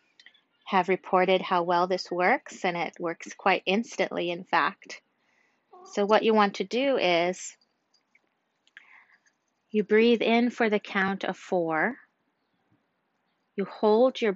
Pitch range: 180-210 Hz